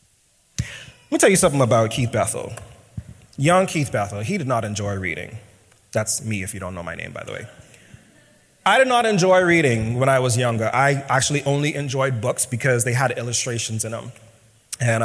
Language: English